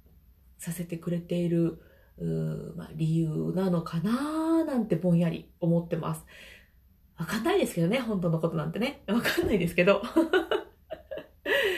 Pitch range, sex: 165-235 Hz, female